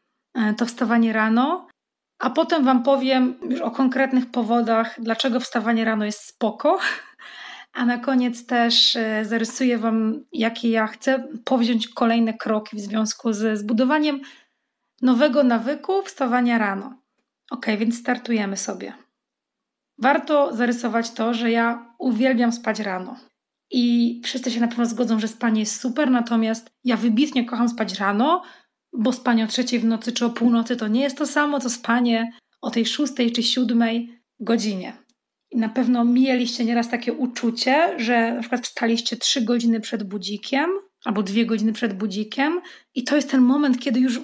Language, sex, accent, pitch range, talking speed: Polish, female, native, 230-265 Hz, 155 wpm